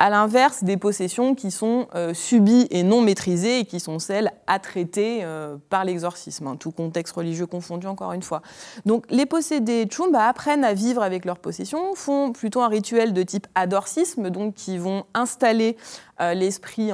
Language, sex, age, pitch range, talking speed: French, female, 20-39, 180-240 Hz, 175 wpm